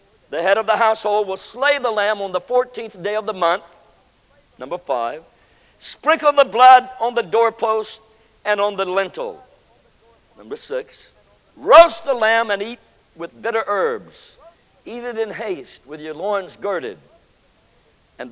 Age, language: 60-79, English